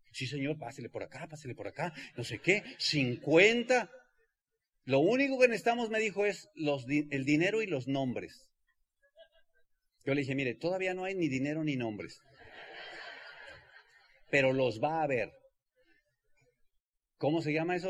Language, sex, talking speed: Spanish, male, 150 wpm